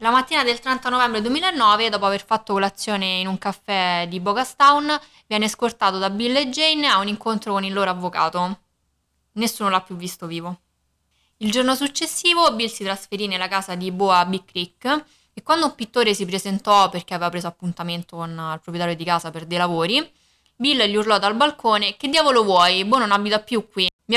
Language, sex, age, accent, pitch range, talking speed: Italian, female, 20-39, native, 185-240 Hz, 195 wpm